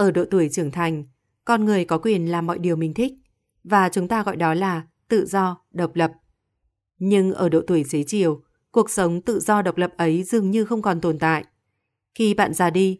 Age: 20-39